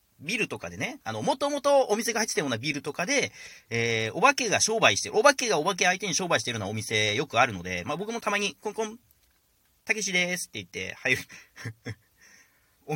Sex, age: male, 40-59